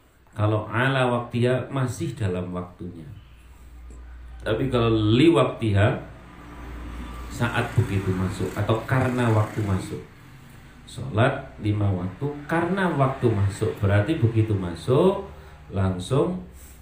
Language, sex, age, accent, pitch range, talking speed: Indonesian, male, 40-59, native, 100-140 Hz, 95 wpm